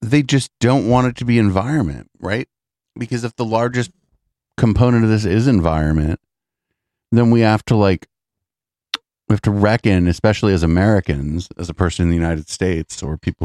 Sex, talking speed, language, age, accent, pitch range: male, 175 wpm, English, 40-59, American, 80-115 Hz